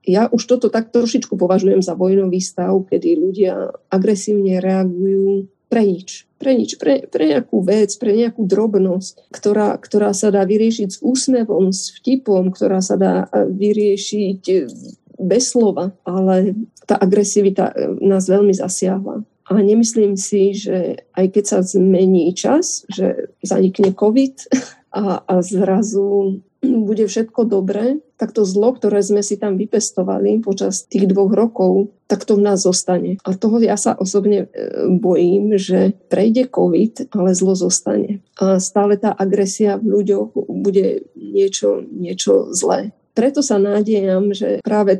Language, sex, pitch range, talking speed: Slovak, female, 190-215 Hz, 140 wpm